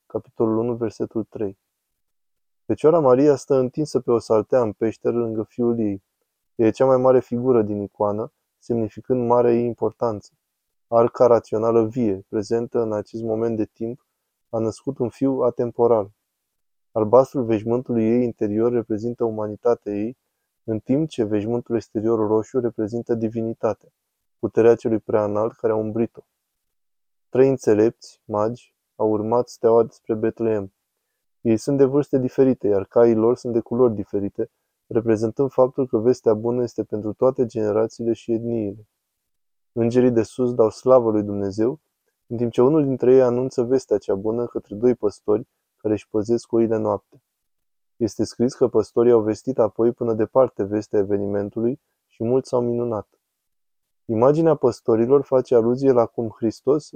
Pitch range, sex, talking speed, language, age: 110-125 Hz, male, 145 wpm, Romanian, 20-39